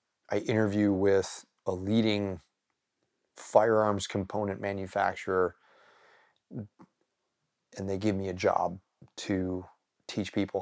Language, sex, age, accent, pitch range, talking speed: English, male, 30-49, American, 100-120 Hz, 95 wpm